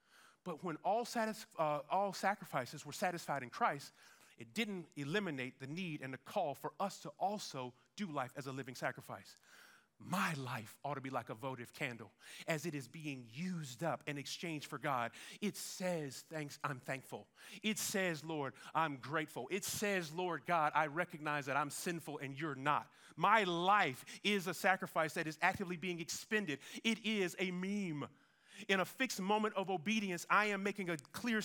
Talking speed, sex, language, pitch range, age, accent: 180 wpm, male, English, 145-195 Hz, 30-49, American